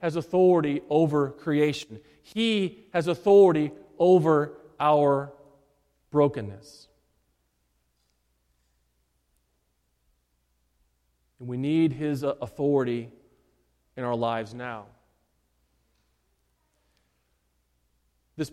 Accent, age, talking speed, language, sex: American, 40-59, 65 wpm, English, male